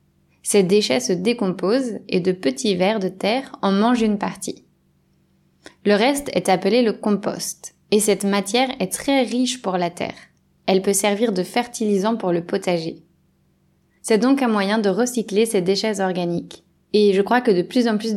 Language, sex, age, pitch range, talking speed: French, female, 20-39, 170-220 Hz, 180 wpm